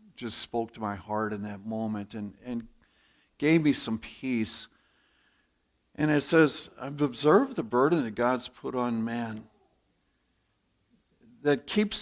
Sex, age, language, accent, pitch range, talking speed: male, 60-79, English, American, 115-160 Hz, 140 wpm